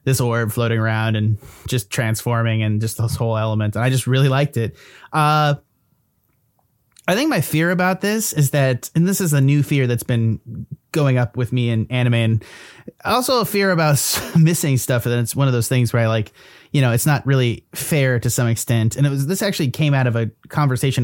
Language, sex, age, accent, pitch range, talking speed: English, male, 30-49, American, 115-150 Hz, 215 wpm